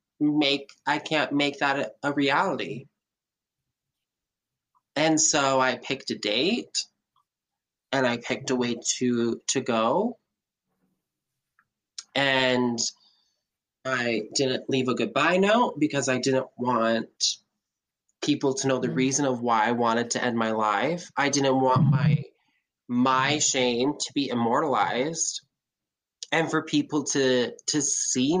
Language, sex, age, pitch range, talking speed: English, male, 20-39, 125-145 Hz, 130 wpm